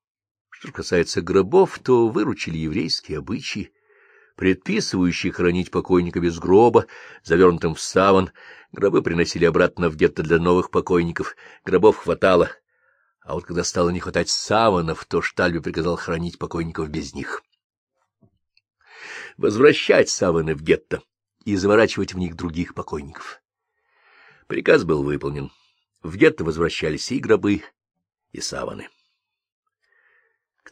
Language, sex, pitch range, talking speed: Russian, male, 90-145 Hz, 115 wpm